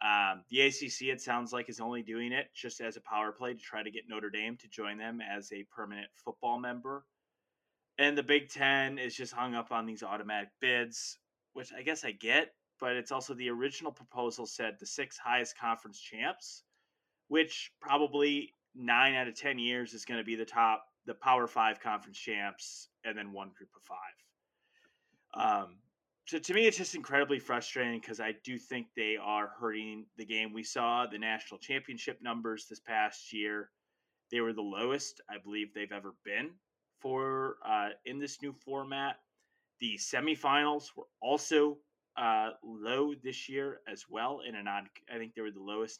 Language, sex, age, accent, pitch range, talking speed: English, male, 20-39, American, 110-145 Hz, 185 wpm